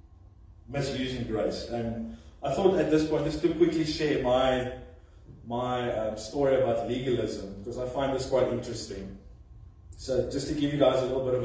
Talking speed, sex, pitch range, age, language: 180 wpm, male, 110-130 Hz, 30-49, English